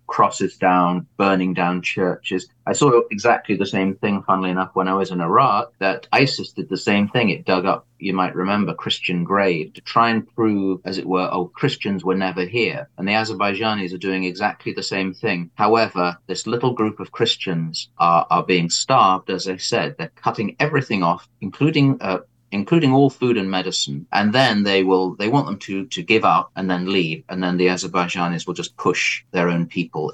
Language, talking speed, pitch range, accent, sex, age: English, 205 wpm, 90-110 Hz, British, male, 30-49